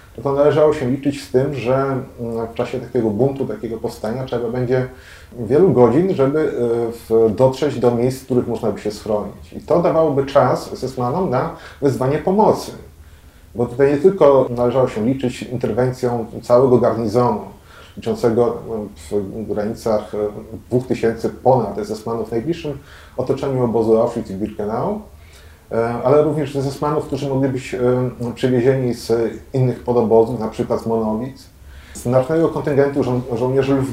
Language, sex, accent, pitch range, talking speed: Polish, male, native, 110-130 Hz, 140 wpm